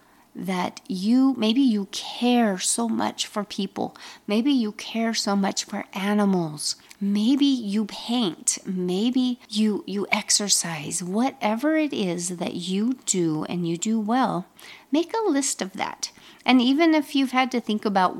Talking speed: 150 wpm